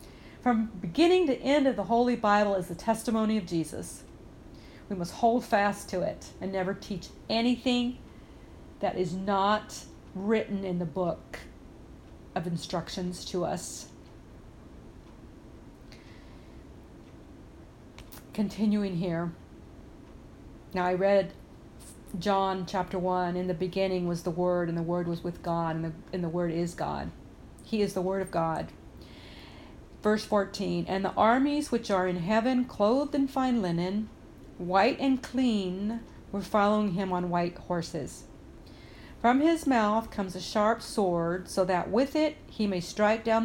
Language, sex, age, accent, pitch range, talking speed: English, female, 40-59, American, 180-225 Hz, 140 wpm